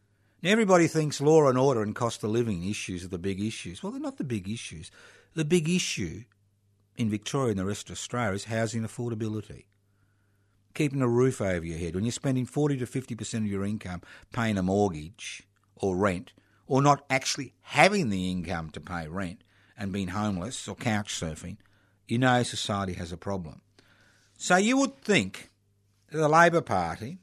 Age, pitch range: 50-69, 100-125 Hz